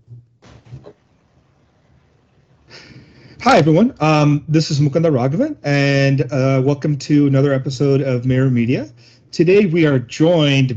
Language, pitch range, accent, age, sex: English, 130-160 Hz, American, 40-59, male